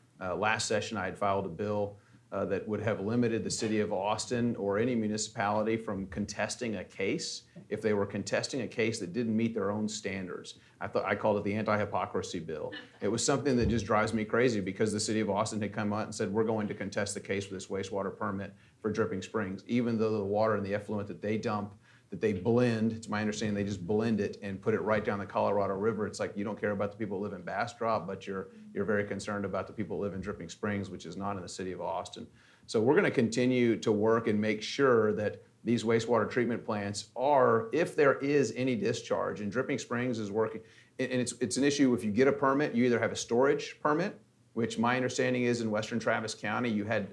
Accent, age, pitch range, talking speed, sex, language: American, 40-59, 105-115 Hz, 240 wpm, male, English